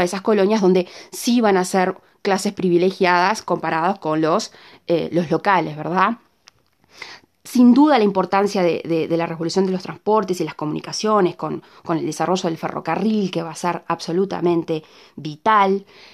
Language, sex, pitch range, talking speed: Spanish, female, 170-205 Hz, 160 wpm